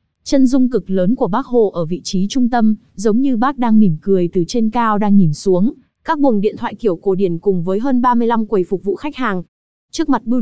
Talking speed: 250 wpm